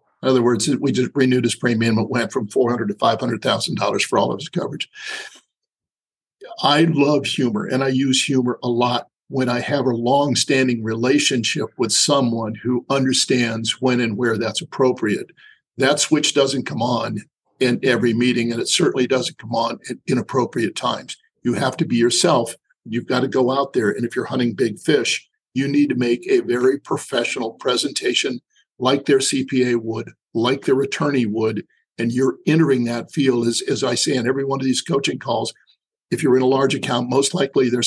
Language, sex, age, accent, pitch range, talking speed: English, male, 50-69, American, 120-135 Hz, 190 wpm